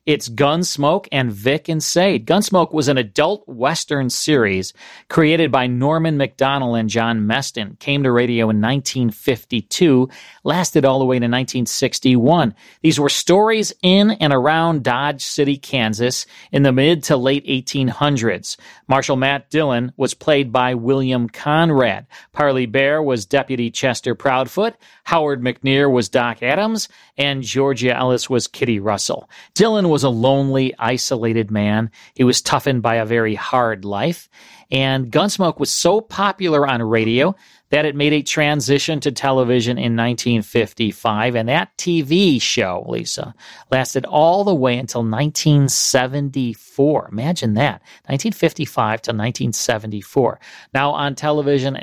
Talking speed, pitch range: 140 wpm, 120-150 Hz